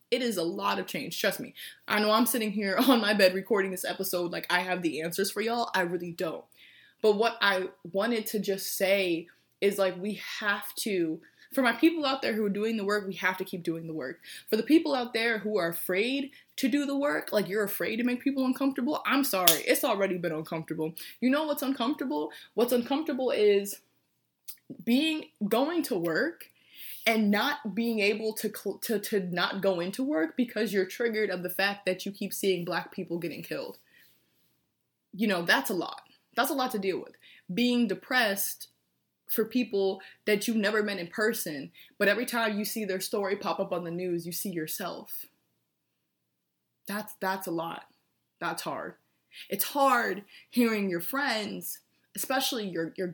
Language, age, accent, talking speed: English, 20-39, American, 190 wpm